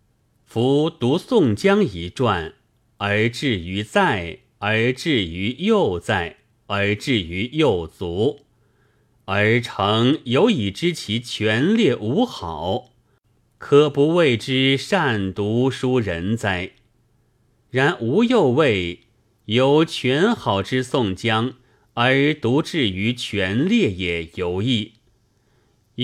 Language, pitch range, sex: Chinese, 105-130 Hz, male